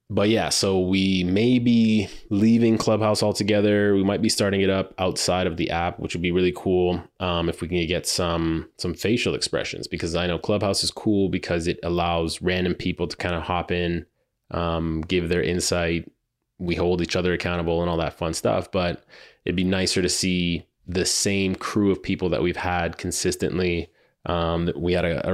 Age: 20-39